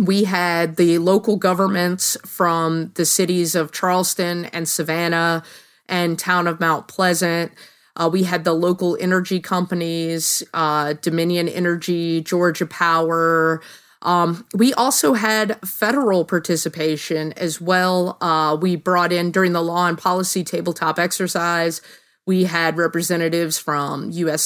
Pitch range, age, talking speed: 165-190 Hz, 30-49, 130 wpm